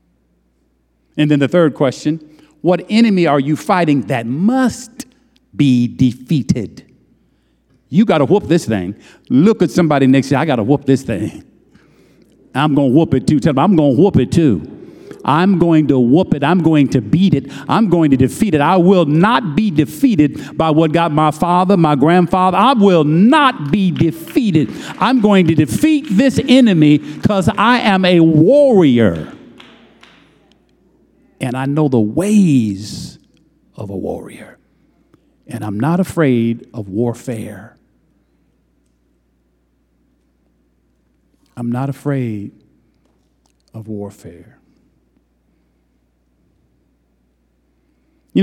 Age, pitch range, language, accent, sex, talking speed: 50-69, 110-175 Hz, English, American, male, 135 wpm